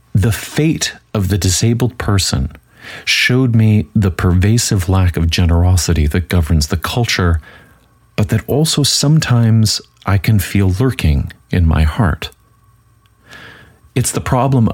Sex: male